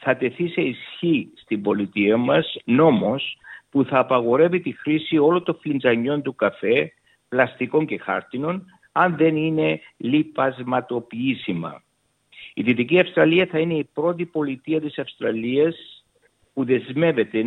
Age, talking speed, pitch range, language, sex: 60-79, 125 wpm, 125-160 Hz, Greek, male